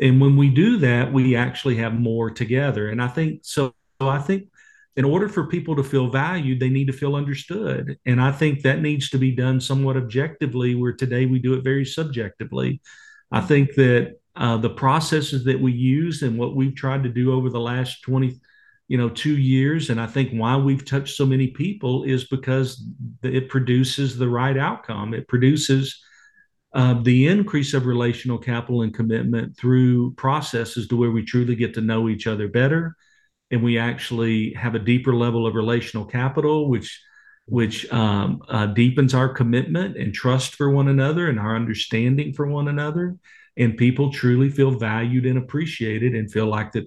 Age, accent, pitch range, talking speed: 50-69, American, 120-140 Hz, 185 wpm